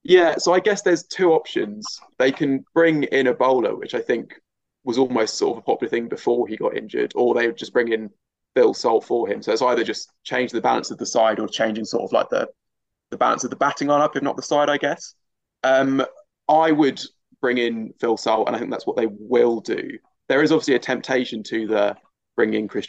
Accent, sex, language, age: British, male, English, 20-39